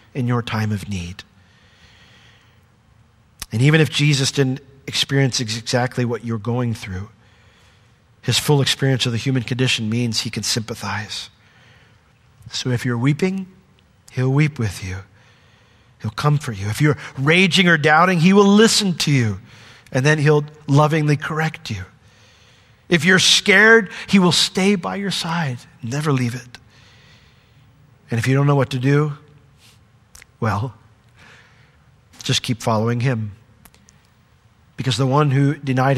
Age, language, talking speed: 50-69, English, 140 wpm